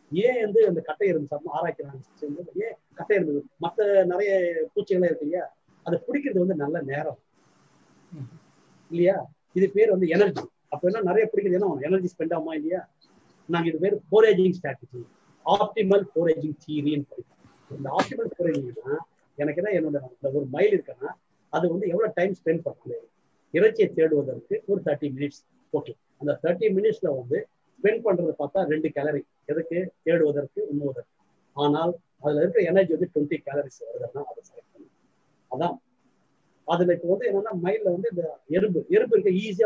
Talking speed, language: 75 wpm, Tamil